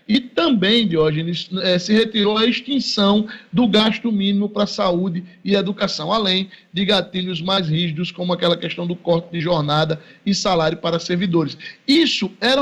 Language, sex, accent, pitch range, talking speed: Portuguese, male, Brazilian, 185-240 Hz, 155 wpm